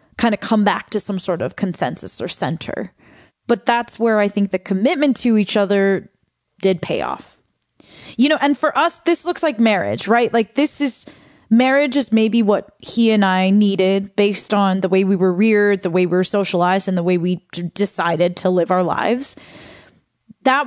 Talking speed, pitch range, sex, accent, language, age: 195 wpm, 185-230 Hz, female, American, English, 20-39